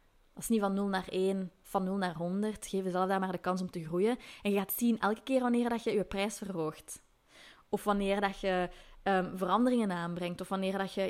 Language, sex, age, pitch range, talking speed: Dutch, female, 20-39, 185-245 Hz, 215 wpm